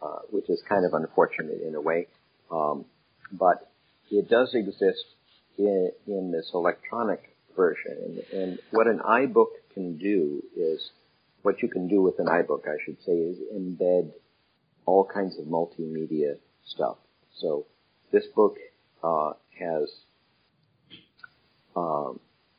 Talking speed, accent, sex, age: 135 wpm, American, male, 50-69